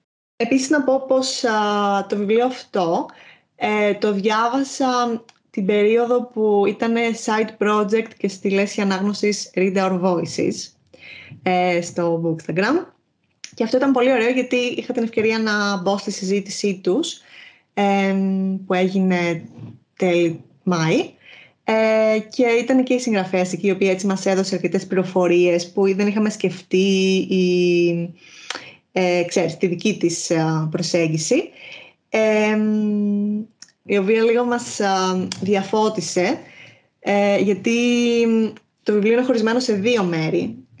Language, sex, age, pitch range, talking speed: Greek, female, 20-39, 185-225 Hz, 120 wpm